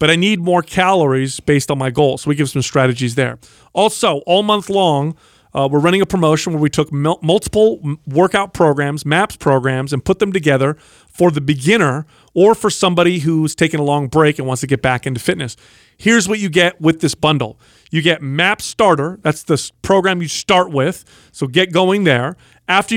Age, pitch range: 40-59, 145-185 Hz